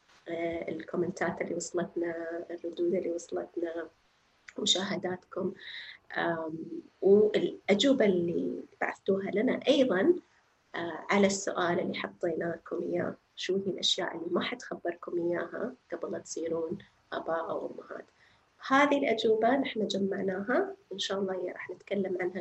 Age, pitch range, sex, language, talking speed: 30-49, 180-245 Hz, female, Arabic, 110 wpm